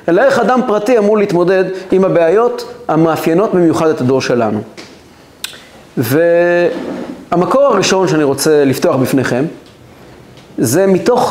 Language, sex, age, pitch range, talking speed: Hebrew, male, 40-59, 150-205 Hz, 110 wpm